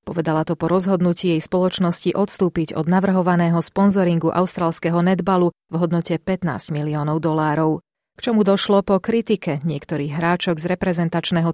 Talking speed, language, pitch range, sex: 135 wpm, Slovak, 165-195 Hz, female